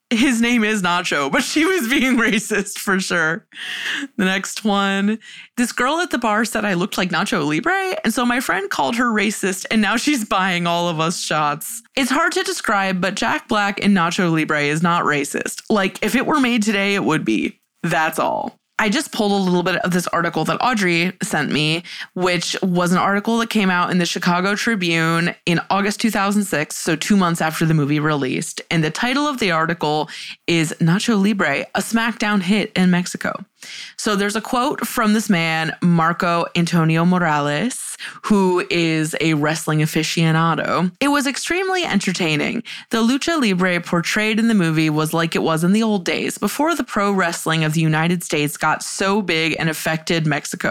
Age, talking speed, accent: 20-39, 190 wpm, American